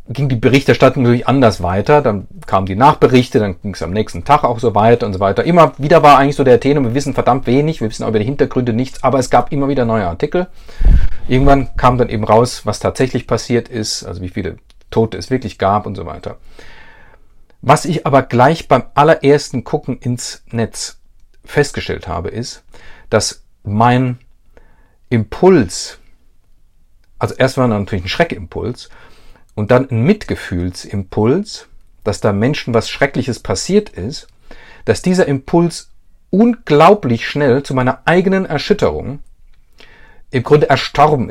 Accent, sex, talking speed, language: German, male, 160 wpm, German